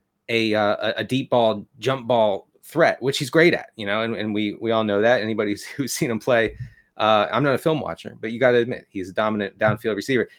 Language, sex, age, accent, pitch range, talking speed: English, male, 30-49, American, 110-130 Hz, 245 wpm